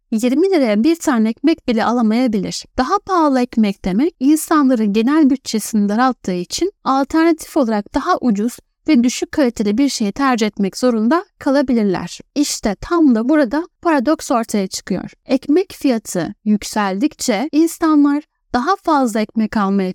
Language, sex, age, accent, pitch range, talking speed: Turkish, female, 10-29, native, 225-305 Hz, 130 wpm